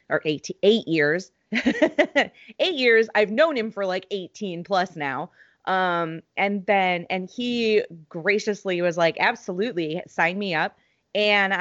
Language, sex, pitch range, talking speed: English, female, 170-210 Hz, 140 wpm